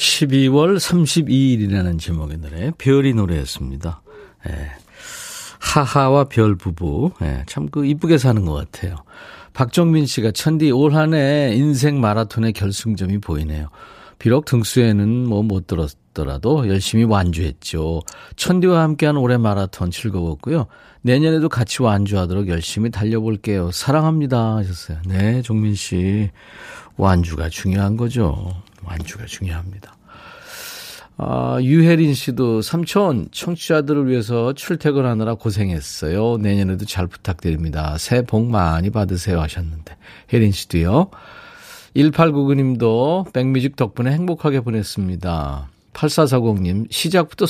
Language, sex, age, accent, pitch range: Korean, male, 40-59, native, 90-140 Hz